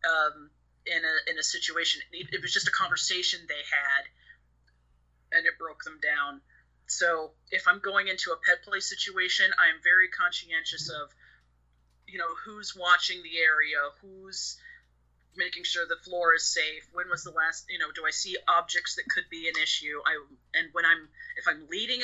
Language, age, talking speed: English, 30-49, 180 wpm